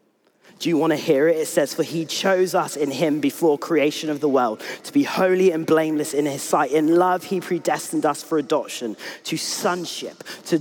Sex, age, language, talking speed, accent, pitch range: male, 30-49, English, 210 wpm, British, 125-165 Hz